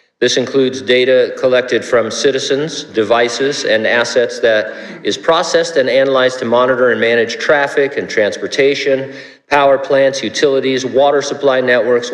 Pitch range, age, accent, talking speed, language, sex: 125-155 Hz, 50-69, American, 135 wpm, English, male